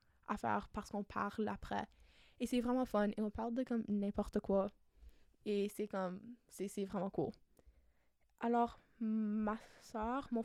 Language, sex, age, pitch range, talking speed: French, female, 10-29, 205-235 Hz, 160 wpm